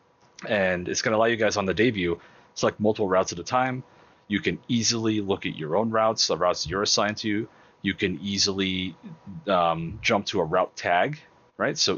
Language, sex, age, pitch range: English, male, 30-49, 85-110 Hz